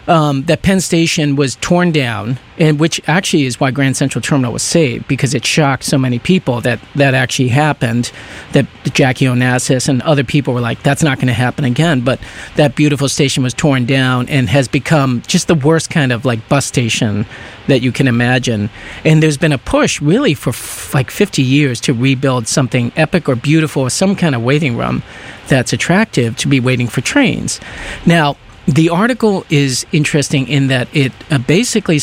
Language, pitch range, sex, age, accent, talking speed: English, 125-150 Hz, male, 50-69, American, 190 wpm